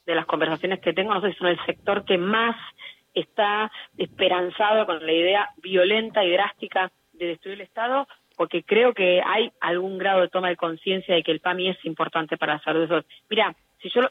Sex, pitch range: female, 170-220 Hz